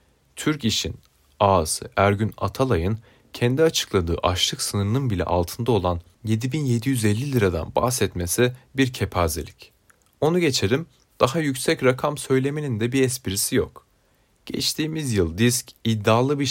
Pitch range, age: 95-130 Hz, 30-49